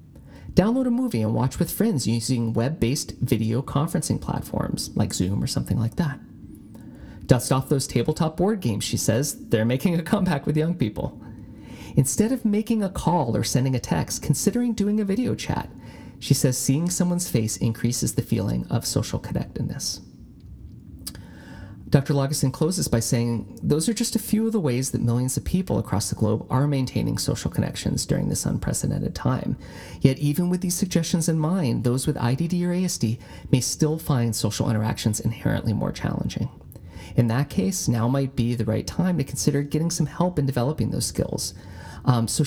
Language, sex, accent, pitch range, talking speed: English, male, American, 115-165 Hz, 180 wpm